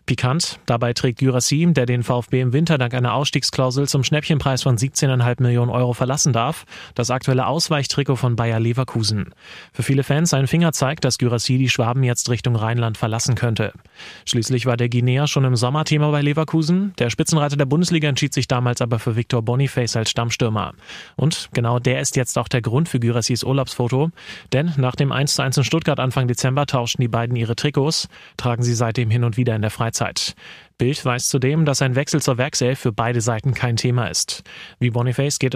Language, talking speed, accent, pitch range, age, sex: German, 190 wpm, German, 120-140 Hz, 30-49, male